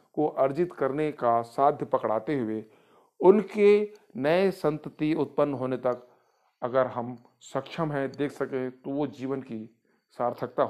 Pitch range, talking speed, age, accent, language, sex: 125-165 Hz, 135 wpm, 40-59, native, Hindi, male